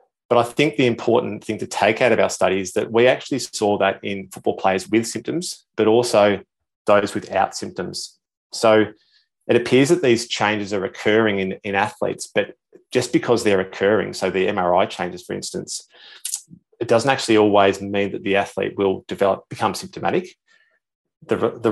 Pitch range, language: 95-115 Hz, English